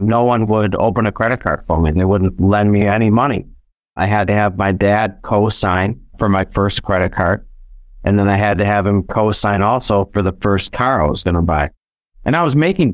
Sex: male